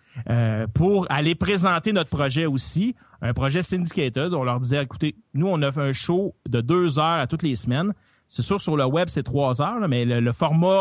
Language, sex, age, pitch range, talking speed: French, male, 30-49, 130-175 Hz, 220 wpm